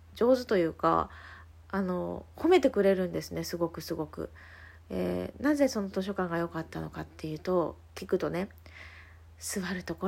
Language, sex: Japanese, female